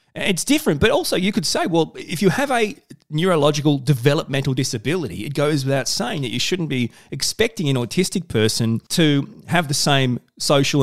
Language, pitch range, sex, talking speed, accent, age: English, 130-185 Hz, male, 175 wpm, Australian, 30-49